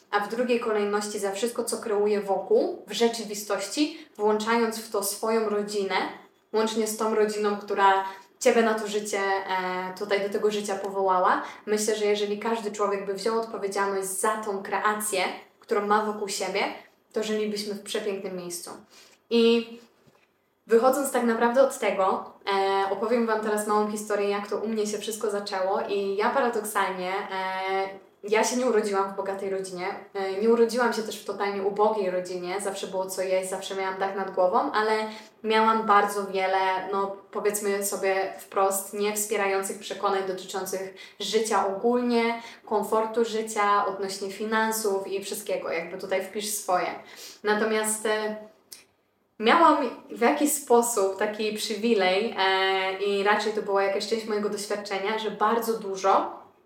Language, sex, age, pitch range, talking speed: Polish, female, 20-39, 195-220 Hz, 145 wpm